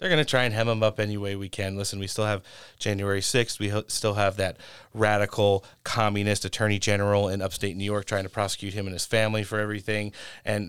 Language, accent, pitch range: English, American, 105-130 Hz